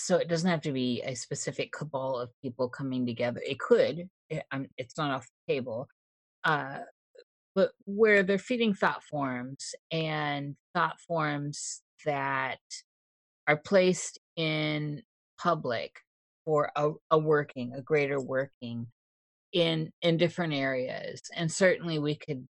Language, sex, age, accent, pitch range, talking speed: English, female, 30-49, American, 130-165 Hz, 135 wpm